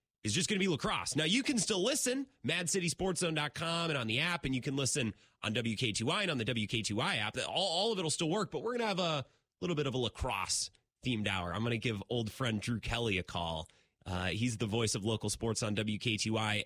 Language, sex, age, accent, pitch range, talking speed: English, male, 30-49, American, 100-155 Hz, 235 wpm